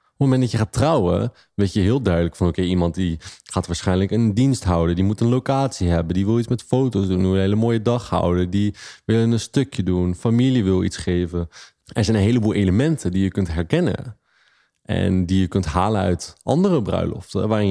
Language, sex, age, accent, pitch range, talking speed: Dutch, male, 30-49, Dutch, 90-115 Hz, 220 wpm